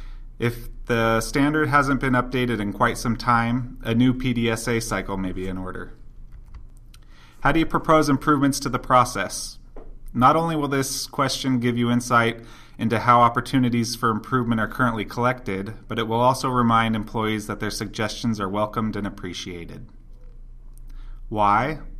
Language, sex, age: English, male, 30-49